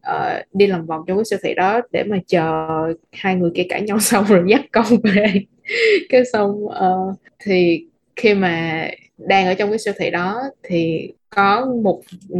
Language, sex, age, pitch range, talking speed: Vietnamese, female, 20-39, 180-235 Hz, 185 wpm